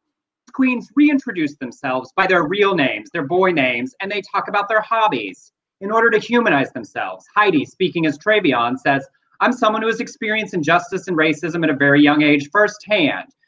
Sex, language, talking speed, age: male, English, 180 wpm, 30-49